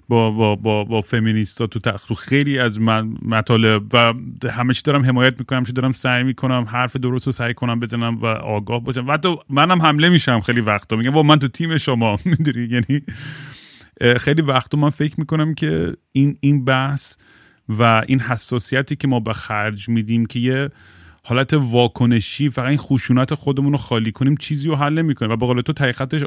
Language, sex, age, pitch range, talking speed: Persian, male, 30-49, 110-135 Hz, 180 wpm